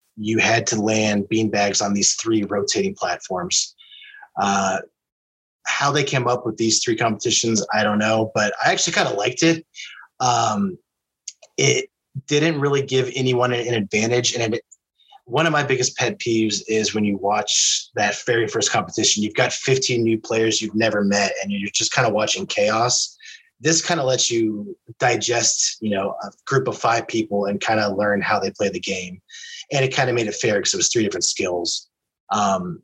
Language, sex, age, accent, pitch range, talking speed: English, male, 20-39, American, 105-130 Hz, 190 wpm